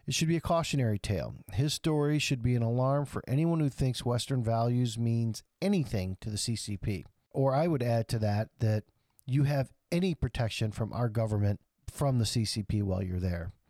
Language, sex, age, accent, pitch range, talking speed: English, male, 50-69, American, 115-155 Hz, 190 wpm